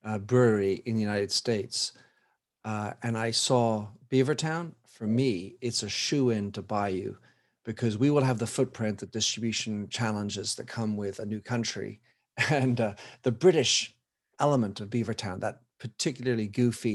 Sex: male